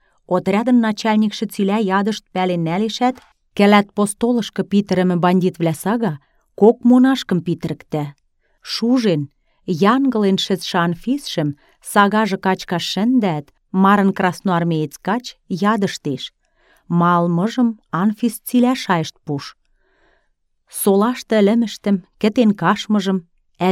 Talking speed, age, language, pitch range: 95 wpm, 30-49, Russian, 175-220 Hz